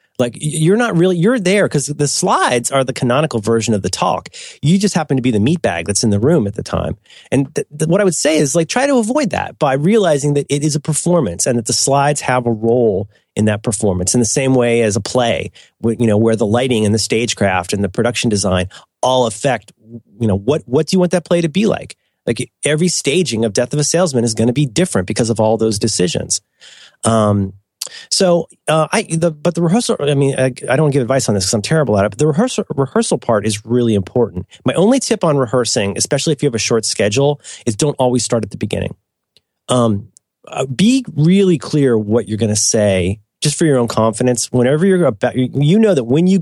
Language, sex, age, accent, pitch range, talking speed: English, male, 30-49, American, 110-155 Hz, 240 wpm